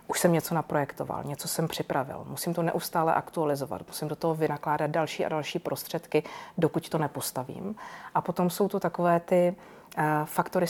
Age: 40-59